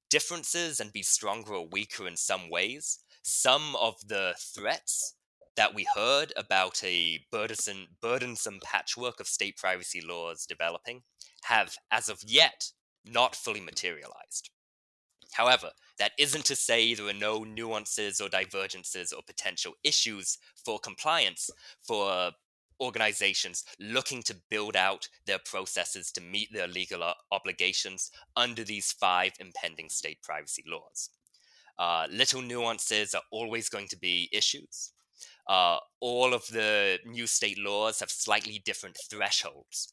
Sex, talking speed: male, 130 wpm